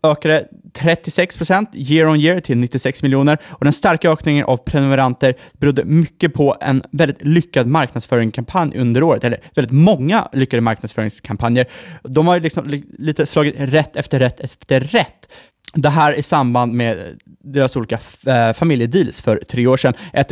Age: 20-39